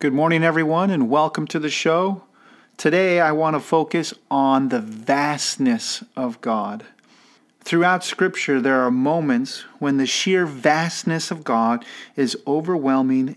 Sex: male